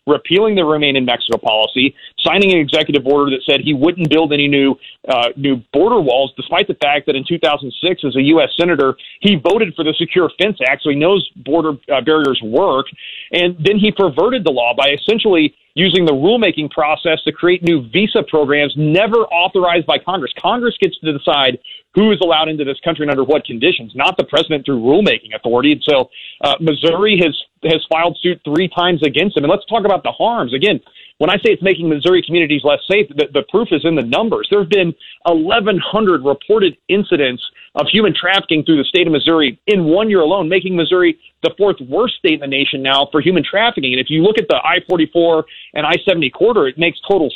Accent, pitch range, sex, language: American, 145-190 Hz, male, English